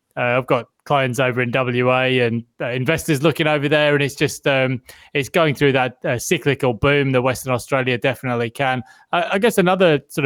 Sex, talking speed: male, 200 wpm